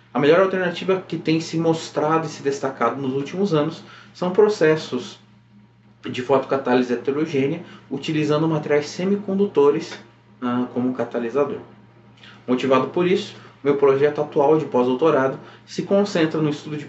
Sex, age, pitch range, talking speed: male, 20-39, 130-165 Hz, 130 wpm